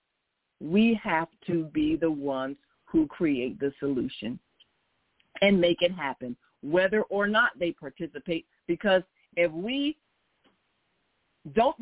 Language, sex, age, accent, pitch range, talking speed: English, female, 50-69, American, 165-210 Hz, 115 wpm